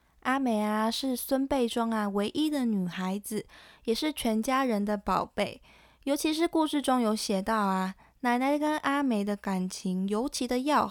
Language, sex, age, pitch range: Chinese, female, 20-39, 200-270 Hz